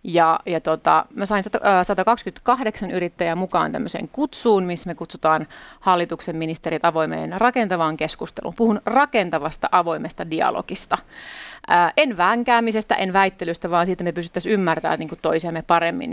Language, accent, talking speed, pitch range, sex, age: Finnish, native, 125 wpm, 170-215 Hz, female, 30-49